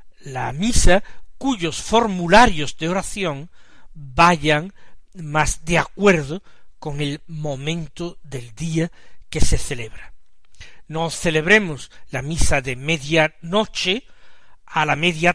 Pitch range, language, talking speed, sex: 150-200 Hz, Spanish, 105 wpm, male